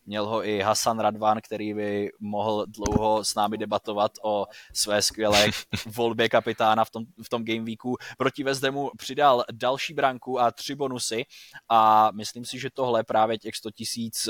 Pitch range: 110-120 Hz